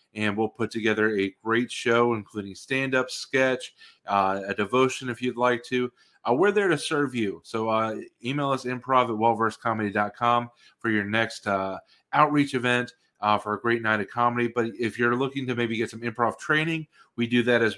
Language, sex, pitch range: English, male, 110-130 Hz